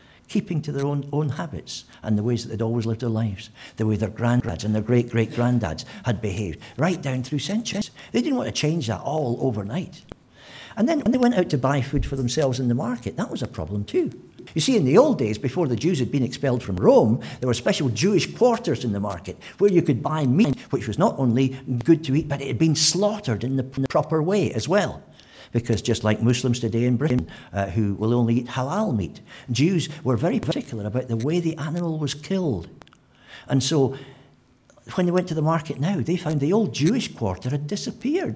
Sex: male